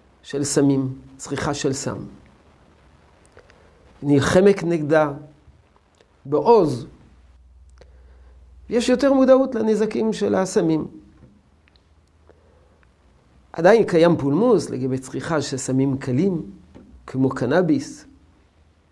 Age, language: 50-69, Hebrew